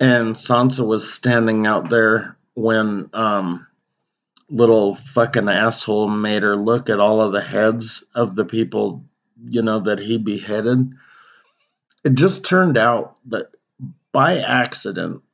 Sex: male